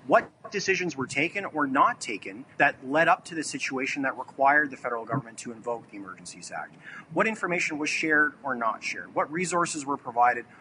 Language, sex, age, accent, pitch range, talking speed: English, male, 30-49, American, 125-160 Hz, 190 wpm